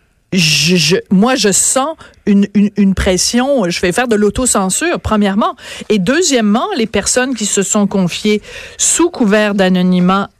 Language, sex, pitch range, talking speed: French, female, 195-255 Hz, 140 wpm